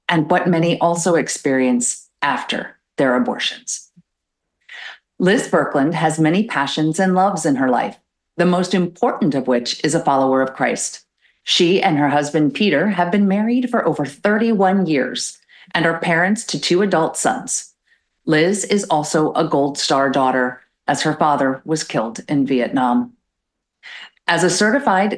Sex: female